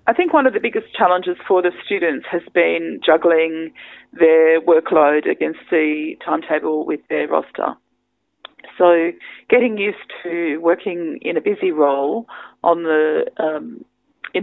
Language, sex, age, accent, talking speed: English, female, 40-59, Australian, 140 wpm